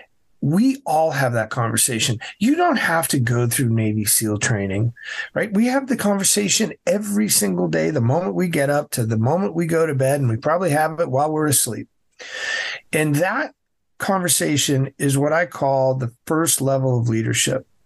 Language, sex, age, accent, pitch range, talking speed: English, male, 50-69, American, 125-160 Hz, 180 wpm